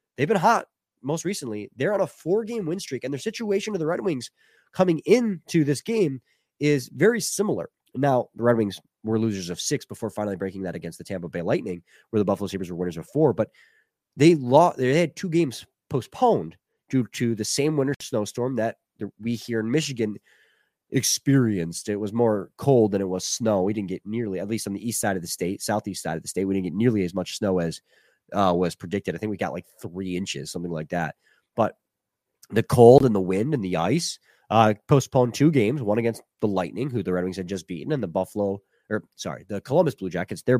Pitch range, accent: 100-140 Hz, American